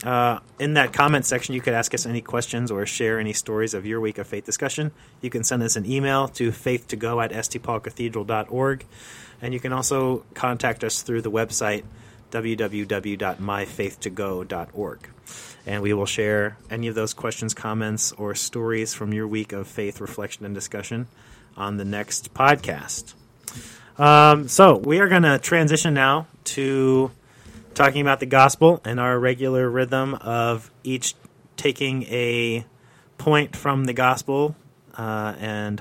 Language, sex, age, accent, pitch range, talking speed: English, male, 30-49, American, 110-135 Hz, 150 wpm